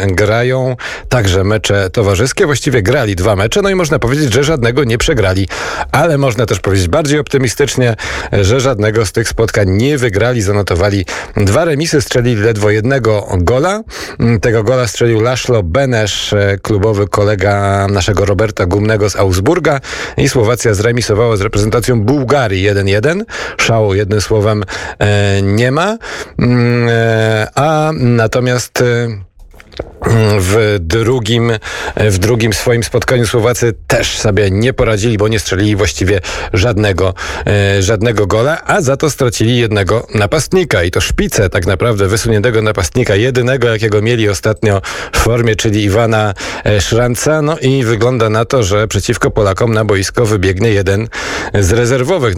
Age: 40-59